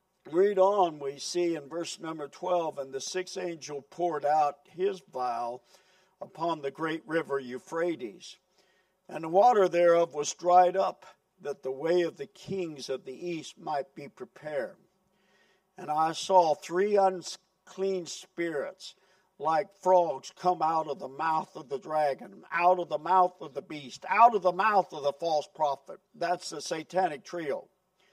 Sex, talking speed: male, 160 wpm